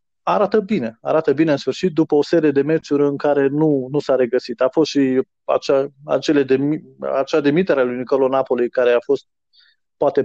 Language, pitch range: Romanian, 135-175 Hz